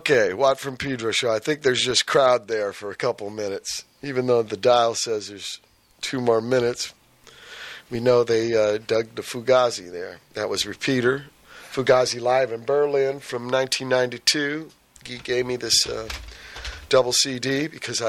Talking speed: 165 wpm